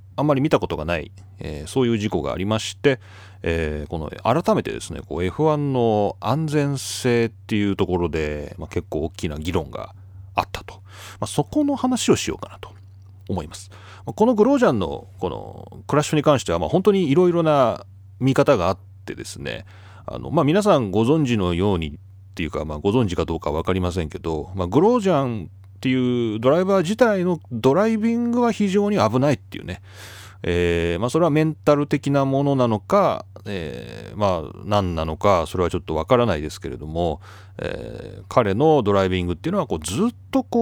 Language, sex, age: Japanese, male, 30-49